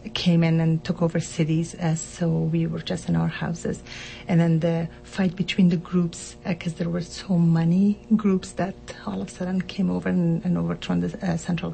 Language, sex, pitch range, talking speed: English, female, 165-190 Hz, 210 wpm